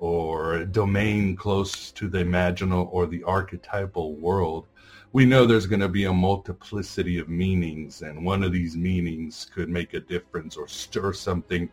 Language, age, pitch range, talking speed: English, 60-79, 85-105 Hz, 170 wpm